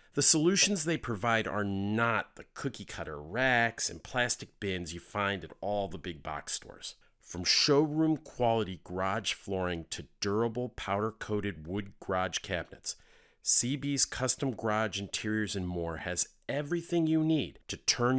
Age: 40-59